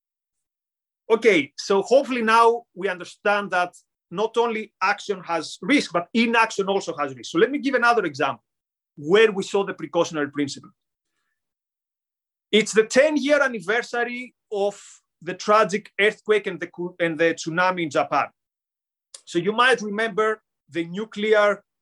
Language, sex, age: English, male, 30-49